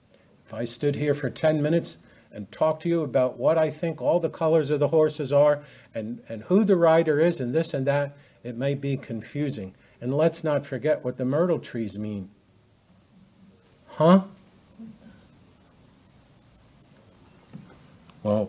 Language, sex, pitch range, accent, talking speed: English, male, 125-165 Hz, American, 155 wpm